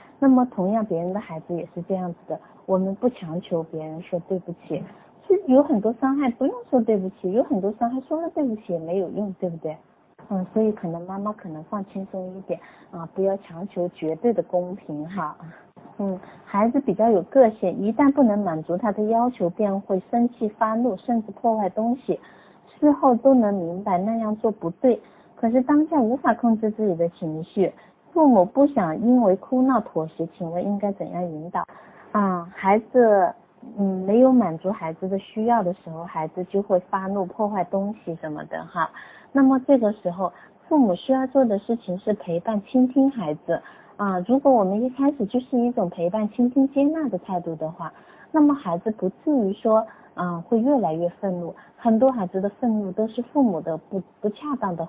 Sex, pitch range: female, 180-240 Hz